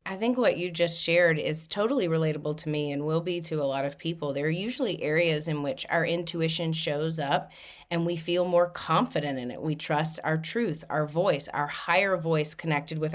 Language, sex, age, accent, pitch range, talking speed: English, female, 30-49, American, 155-180 Hz, 215 wpm